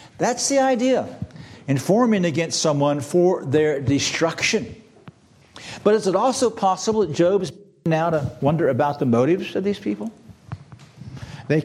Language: English